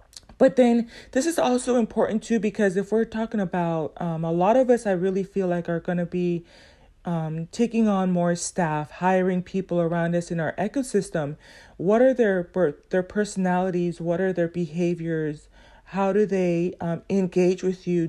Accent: American